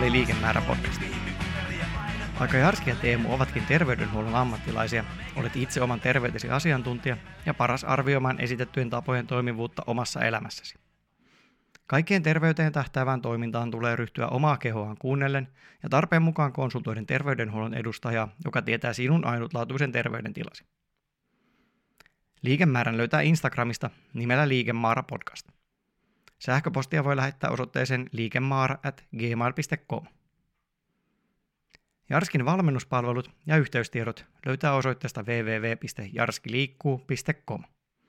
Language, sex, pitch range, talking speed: Finnish, male, 120-145 Hz, 95 wpm